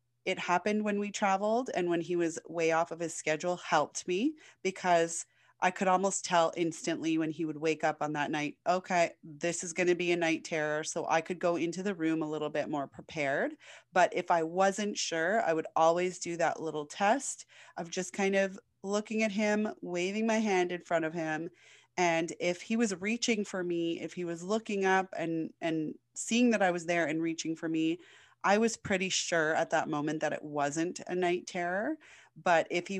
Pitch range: 155-180 Hz